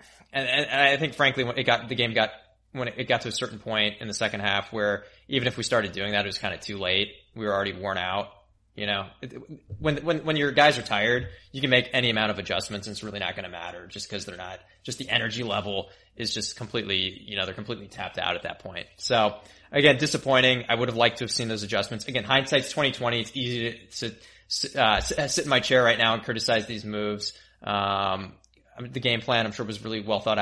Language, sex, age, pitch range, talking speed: English, male, 20-39, 105-130 Hz, 245 wpm